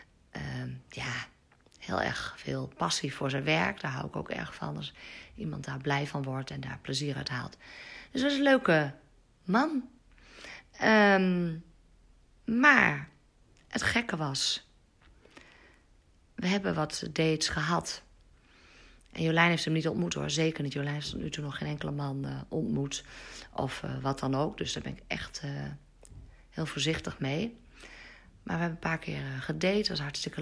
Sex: female